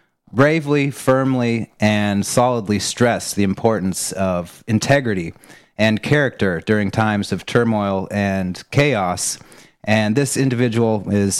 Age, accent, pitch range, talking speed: 30-49, American, 100-120 Hz, 110 wpm